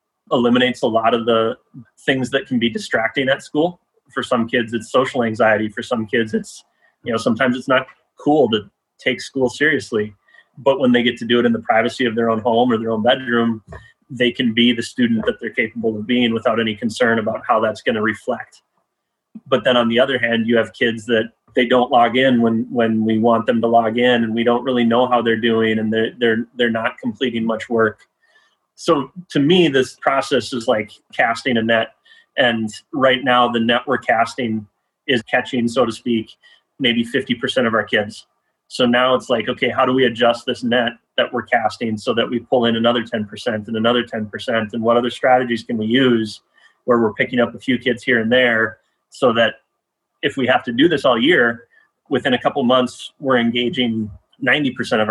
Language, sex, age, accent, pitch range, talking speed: English, male, 30-49, American, 115-130 Hz, 210 wpm